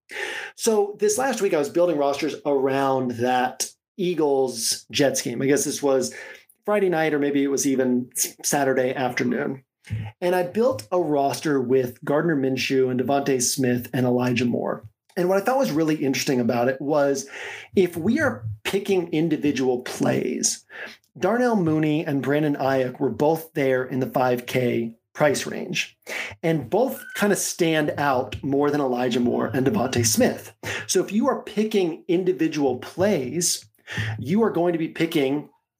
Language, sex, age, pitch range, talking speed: English, male, 40-59, 130-180 Hz, 160 wpm